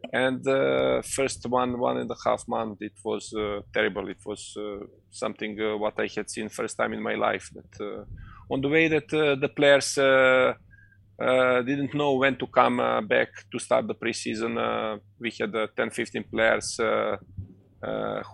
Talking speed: 185 wpm